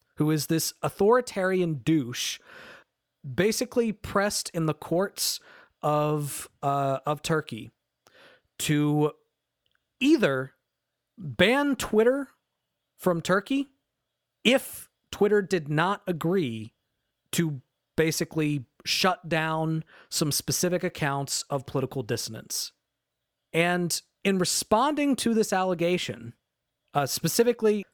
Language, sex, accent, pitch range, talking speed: English, male, American, 145-205 Hz, 90 wpm